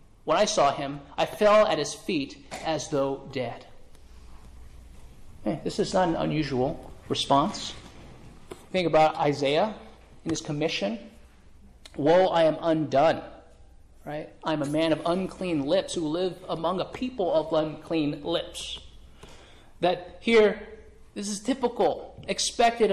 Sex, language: male, English